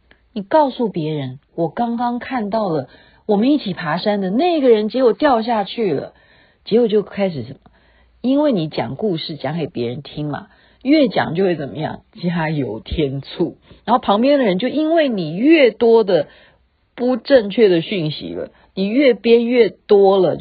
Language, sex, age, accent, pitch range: Chinese, female, 50-69, native, 165-240 Hz